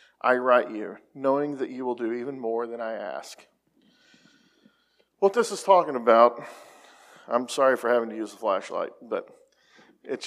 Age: 40-59